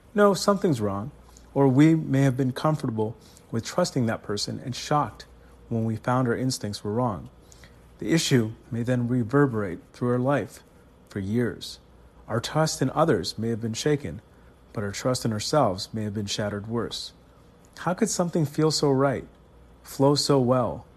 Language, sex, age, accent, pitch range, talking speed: English, male, 40-59, American, 110-145 Hz, 170 wpm